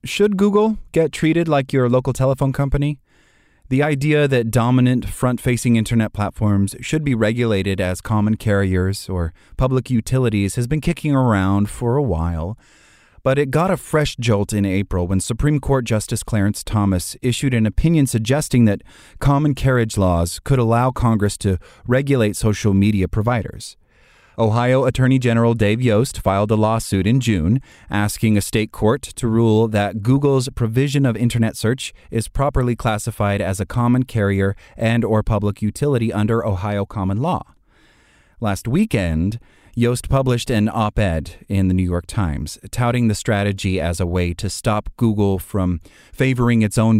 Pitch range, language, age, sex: 100-130 Hz, English, 30-49, male